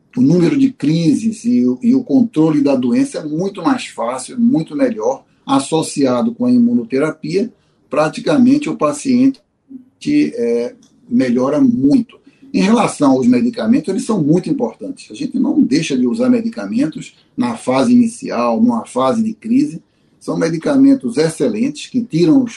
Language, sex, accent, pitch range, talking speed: Portuguese, male, Brazilian, 160-265 Hz, 140 wpm